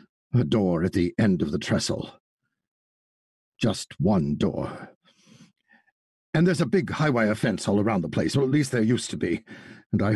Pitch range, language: 105-145 Hz, English